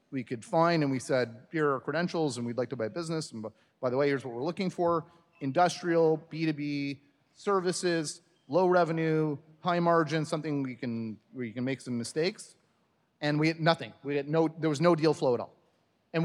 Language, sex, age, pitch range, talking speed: English, male, 30-49, 125-160 Hz, 210 wpm